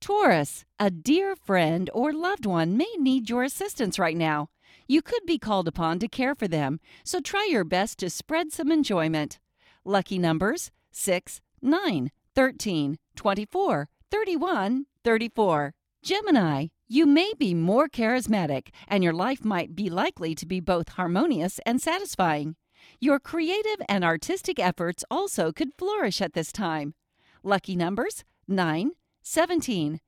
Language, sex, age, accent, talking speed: English, female, 50-69, American, 140 wpm